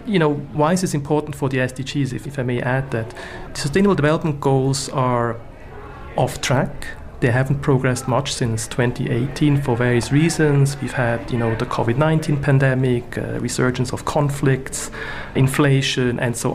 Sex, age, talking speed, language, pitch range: male, 40-59, 160 wpm, English, 125-145 Hz